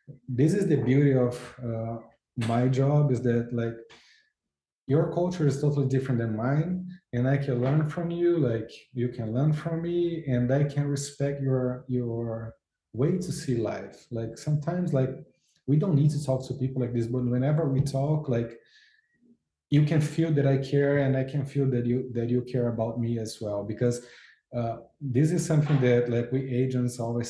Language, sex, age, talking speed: Swedish, male, 20-39, 190 wpm